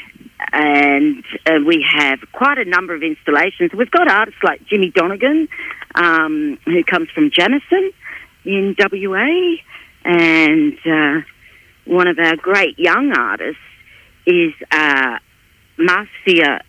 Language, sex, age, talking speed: English, female, 50-69, 120 wpm